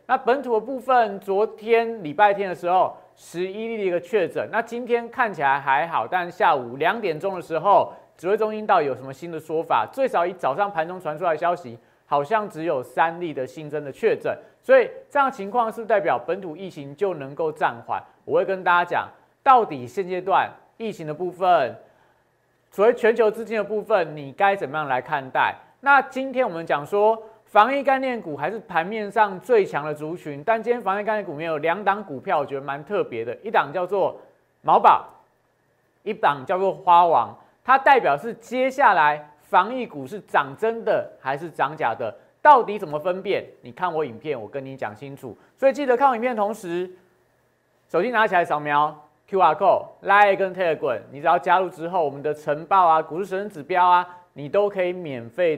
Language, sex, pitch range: Chinese, male, 155-230 Hz